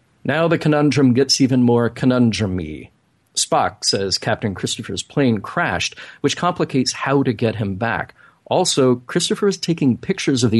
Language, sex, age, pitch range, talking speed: English, male, 40-59, 110-140 Hz, 155 wpm